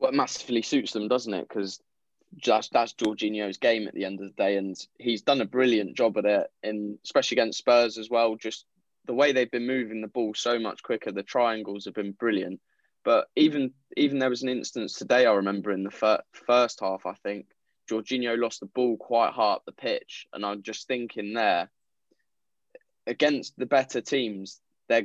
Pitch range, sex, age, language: 100-125 Hz, male, 10-29, English